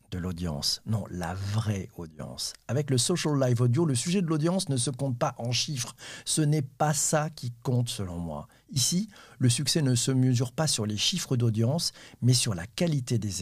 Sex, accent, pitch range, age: male, French, 115-145 Hz, 50-69